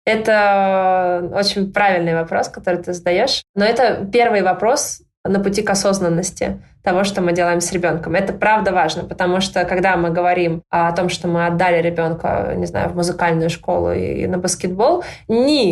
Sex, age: female, 20-39